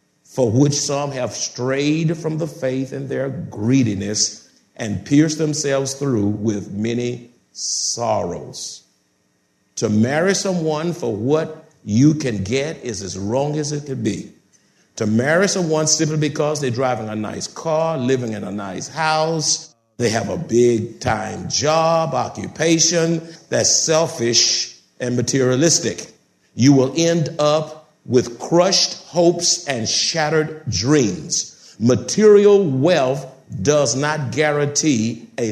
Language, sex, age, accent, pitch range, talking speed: English, male, 50-69, American, 115-155 Hz, 125 wpm